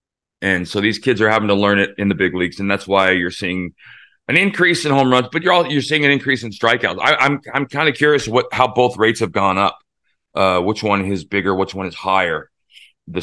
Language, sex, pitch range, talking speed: English, male, 100-125 Hz, 255 wpm